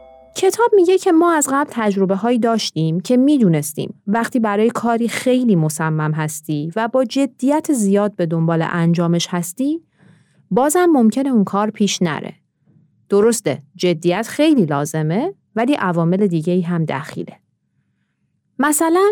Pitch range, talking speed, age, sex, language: 180-260 Hz, 130 wpm, 30-49, female, Persian